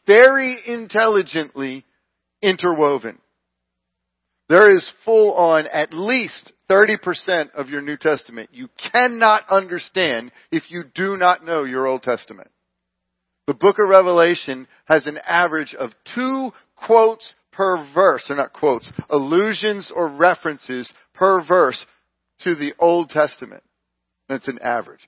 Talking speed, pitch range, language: 125 wpm, 125-180 Hz, English